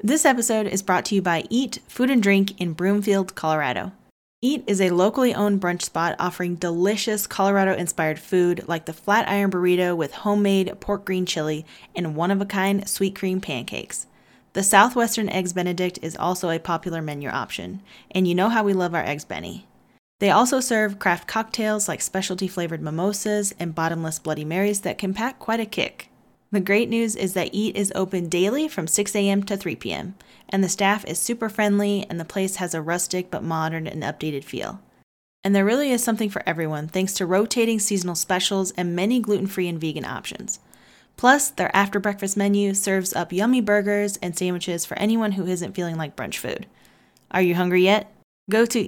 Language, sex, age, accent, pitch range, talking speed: English, female, 20-39, American, 175-205 Hz, 190 wpm